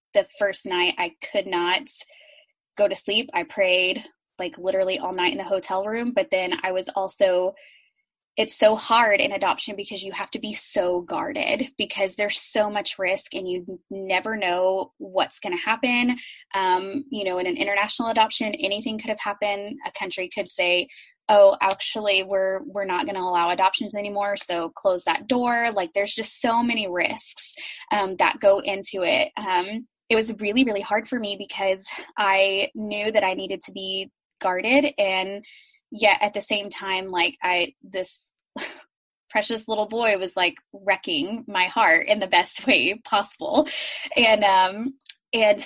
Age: 20-39